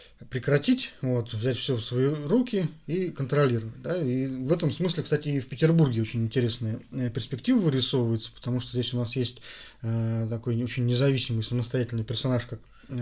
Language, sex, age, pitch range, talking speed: Russian, male, 20-39, 120-145 Hz, 155 wpm